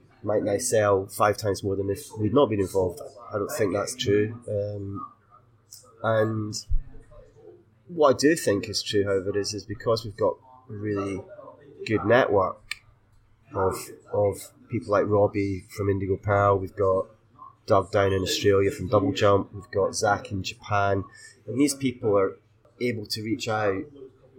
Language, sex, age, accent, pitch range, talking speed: English, male, 20-39, British, 100-115 Hz, 160 wpm